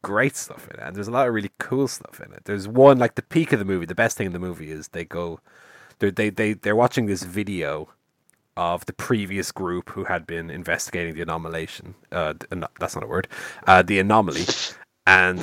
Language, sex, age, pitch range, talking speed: English, male, 30-49, 90-130 Hz, 235 wpm